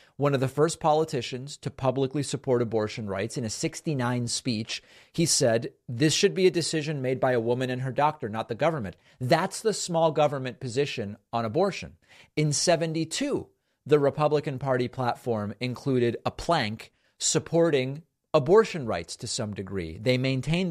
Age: 40-59